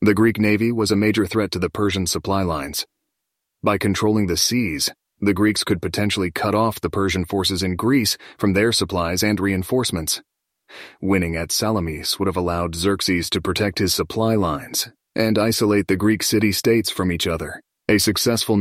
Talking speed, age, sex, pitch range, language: 175 wpm, 30-49, male, 95-110 Hz, English